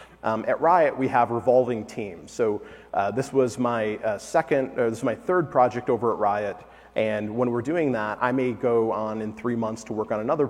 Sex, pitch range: male, 110-135 Hz